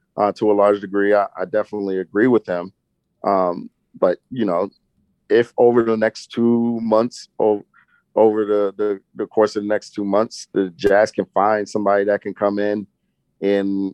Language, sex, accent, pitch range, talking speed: English, male, American, 95-110 Hz, 185 wpm